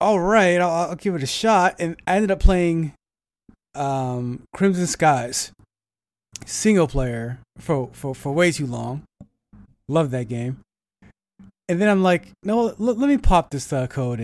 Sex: male